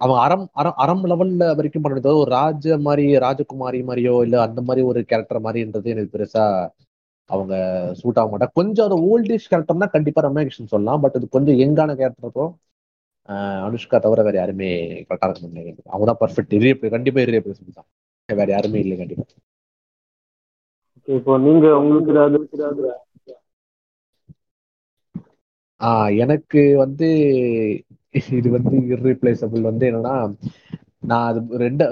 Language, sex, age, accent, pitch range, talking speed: Tamil, male, 30-49, native, 110-150 Hz, 55 wpm